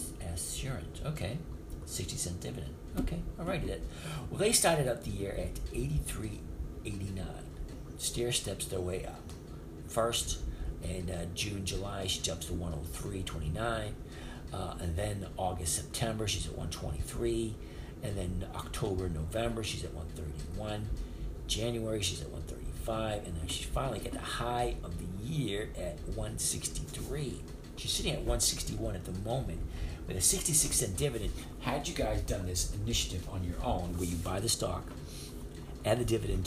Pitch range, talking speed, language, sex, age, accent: 80-105 Hz, 145 wpm, English, male, 50-69, American